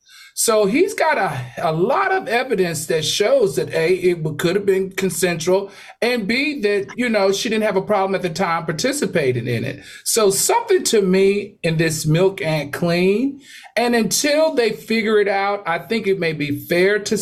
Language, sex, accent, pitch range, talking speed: English, male, American, 135-195 Hz, 190 wpm